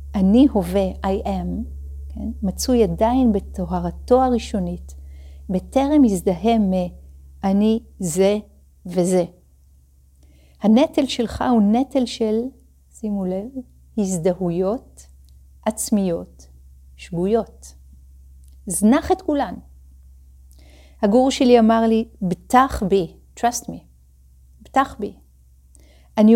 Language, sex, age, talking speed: Hebrew, female, 40-59, 85 wpm